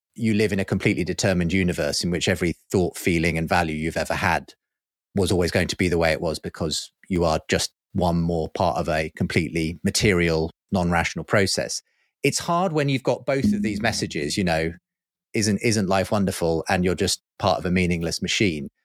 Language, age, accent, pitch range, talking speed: English, 30-49, British, 95-120 Hz, 195 wpm